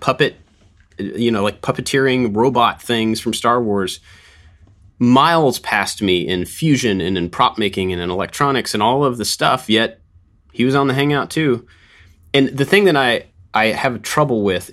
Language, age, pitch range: English, 30-49, 90-110 Hz